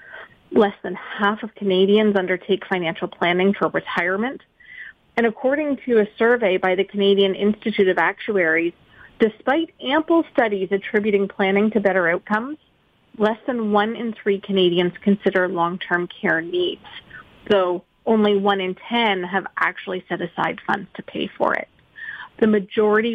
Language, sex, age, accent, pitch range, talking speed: English, female, 30-49, American, 190-230 Hz, 145 wpm